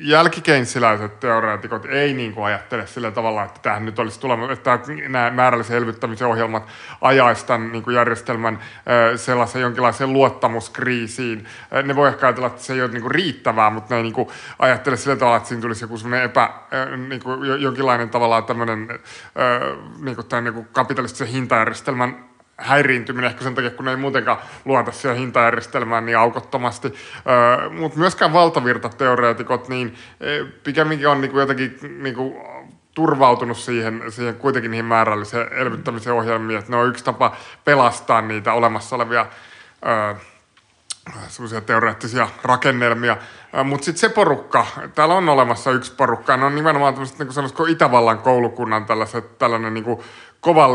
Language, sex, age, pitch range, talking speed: Finnish, male, 20-39, 115-135 Hz, 130 wpm